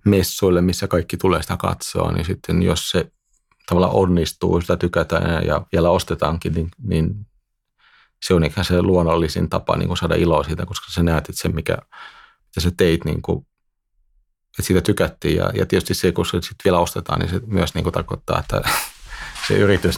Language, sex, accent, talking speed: Finnish, male, native, 175 wpm